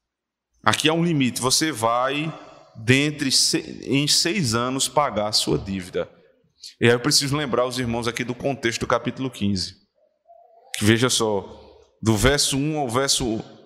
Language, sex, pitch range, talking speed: Portuguese, male, 130-185 Hz, 150 wpm